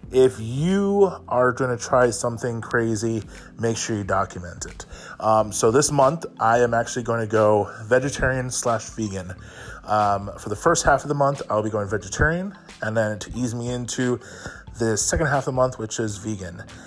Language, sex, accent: English, male, American